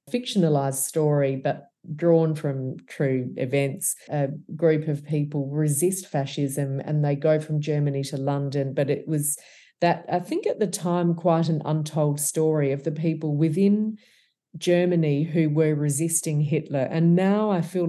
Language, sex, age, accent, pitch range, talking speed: English, female, 40-59, Australian, 145-165 Hz, 155 wpm